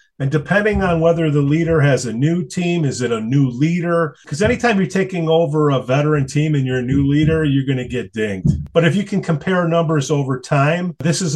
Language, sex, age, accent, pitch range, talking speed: English, male, 40-59, American, 130-165 Hz, 225 wpm